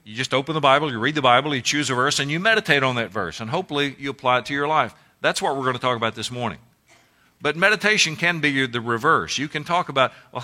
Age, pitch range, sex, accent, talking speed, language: 50-69, 110-145 Hz, male, American, 270 wpm, English